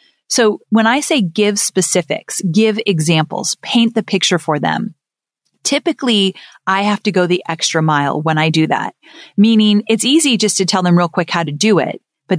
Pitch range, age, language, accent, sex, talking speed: 165-210 Hz, 30-49, English, American, female, 190 wpm